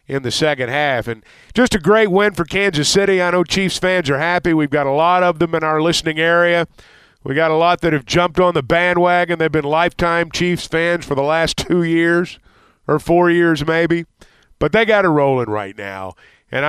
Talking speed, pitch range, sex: 215 wpm, 145-180 Hz, male